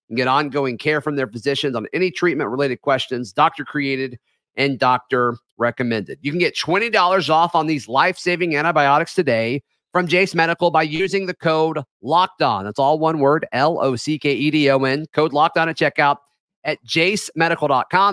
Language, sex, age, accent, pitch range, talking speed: English, male, 40-59, American, 150-190 Hz, 140 wpm